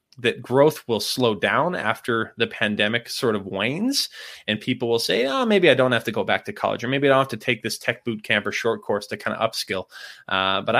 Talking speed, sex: 250 wpm, male